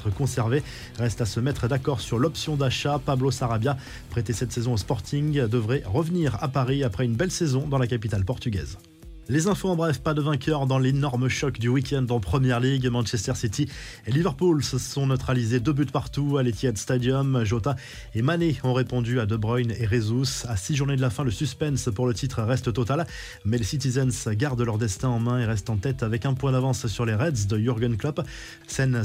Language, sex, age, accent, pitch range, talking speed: French, male, 20-39, French, 120-140 Hz, 210 wpm